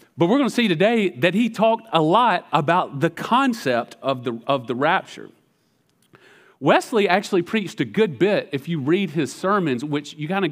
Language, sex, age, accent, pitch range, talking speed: English, male, 40-59, American, 155-250 Hz, 195 wpm